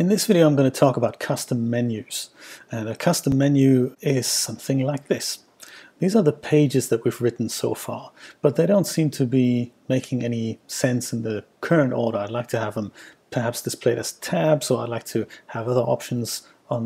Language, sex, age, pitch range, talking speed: English, male, 40-59, 120-145 Hz, 205 wpm